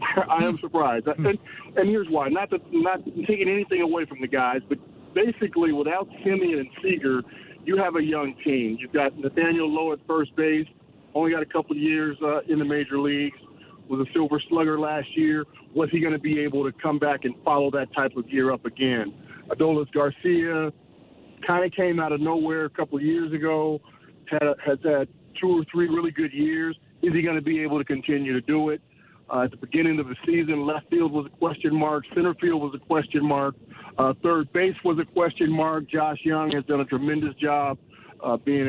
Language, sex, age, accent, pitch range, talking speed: English, male, 40-59, American, 135-160 Hz, 210 wpm